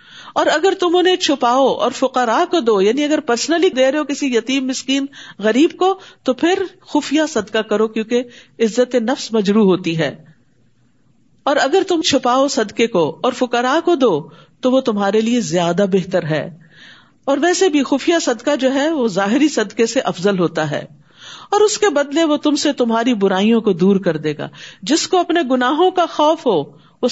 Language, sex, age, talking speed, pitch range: Urdu, female, 50-69, 175 wpm, 195-275 Hz